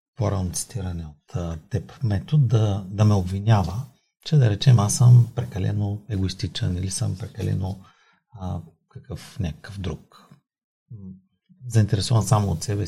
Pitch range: 95-130 Hz